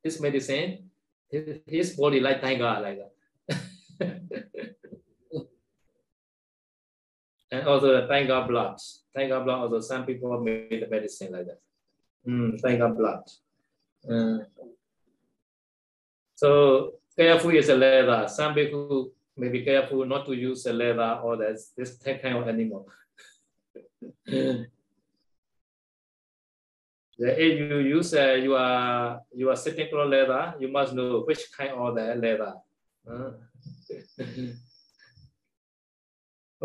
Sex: male